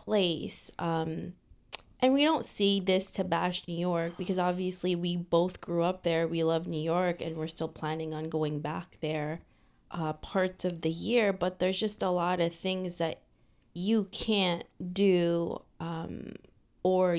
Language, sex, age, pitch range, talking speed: English, female, 20-39, 170-195 Hz, 170 wpm